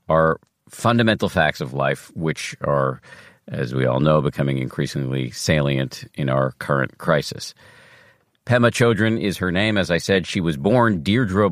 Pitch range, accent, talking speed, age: 80-105 Hz, American, 155 wpm, 50-69